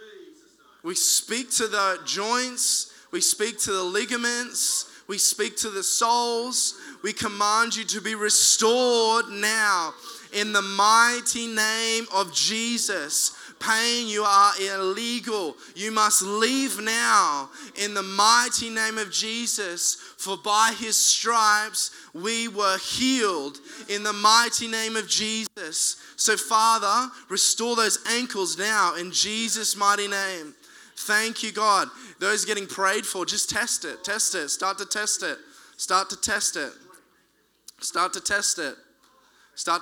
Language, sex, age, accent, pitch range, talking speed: English, male, 20-39, Australian, 190-230 Hz, 135 wpm